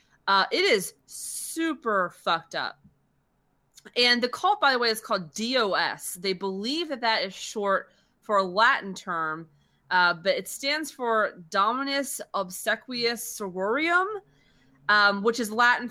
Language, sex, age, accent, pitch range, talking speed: English, female, 30-49, American, 185-255 Hz, 140 wpm